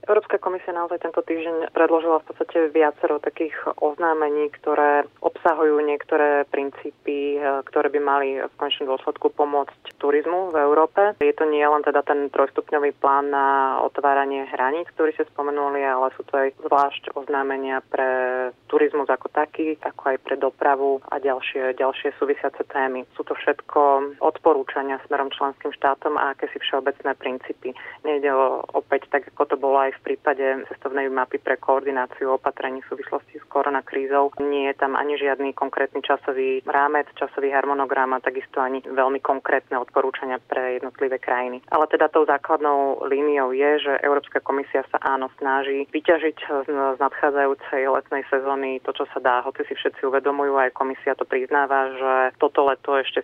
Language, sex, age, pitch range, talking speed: Slovak, female, 30-49, 135-150 Hz, 160 wpm